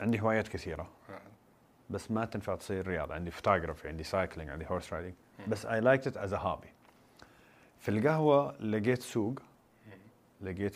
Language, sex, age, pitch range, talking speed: Arabic, male, 30-49, 90-115 Hz, 150 wpm